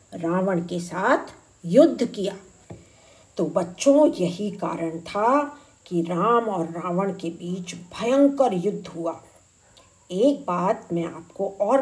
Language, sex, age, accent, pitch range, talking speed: Hindi, female, 50-69, native, 175-220 Hz, 120 wpm